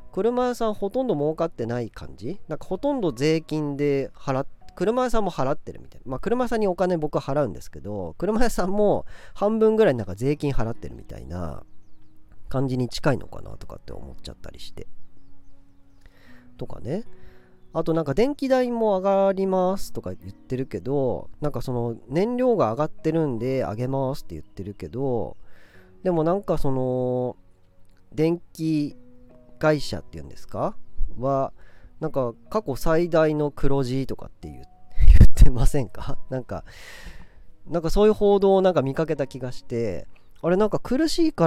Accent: native